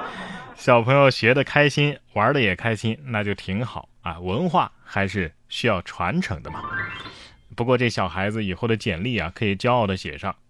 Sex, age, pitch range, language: male, 20-39, 105-145 Hz, Chinese